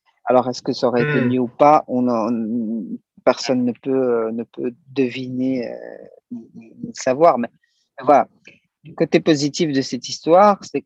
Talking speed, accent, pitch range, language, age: 155 wpm, French, 130-155 Hz, French, 40-59